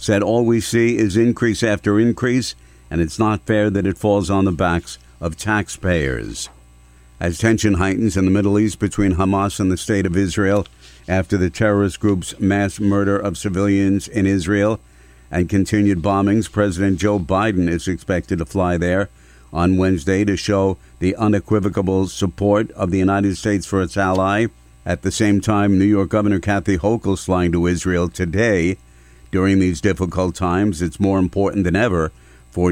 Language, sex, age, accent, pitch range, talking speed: English, male, 60-79, American, 85-105 Hz, 170 wpm